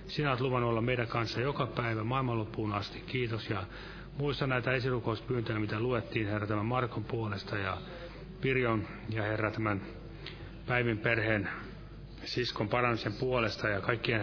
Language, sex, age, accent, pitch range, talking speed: Finnish, male, 30-49, native, 105-130 Hz, 140 wpm